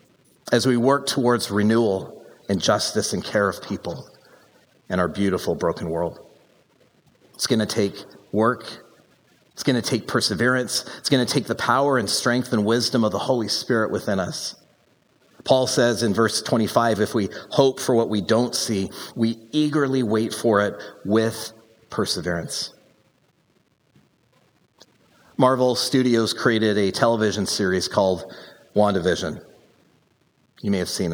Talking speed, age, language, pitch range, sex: 145 wpm, 40-59, English, 105-135 Hz, male